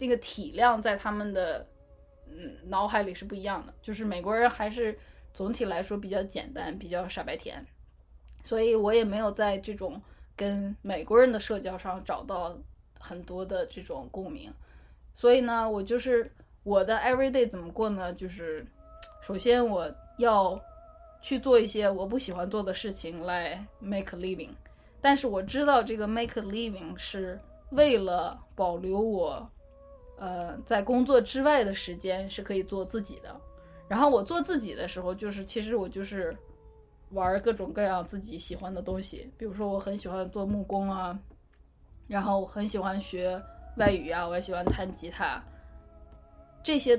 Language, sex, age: Chinese, female, 10-29